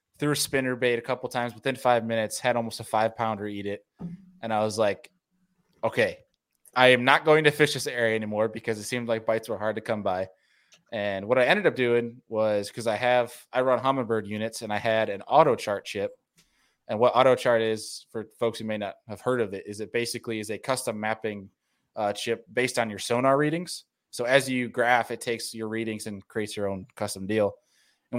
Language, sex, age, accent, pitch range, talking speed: English, male, 20-39, American, 110-125 Hz, 225 wpm